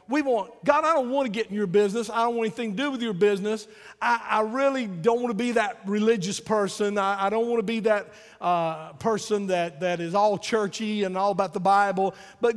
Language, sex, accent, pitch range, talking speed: English, male, American, 160-225 Hz, 240 wpm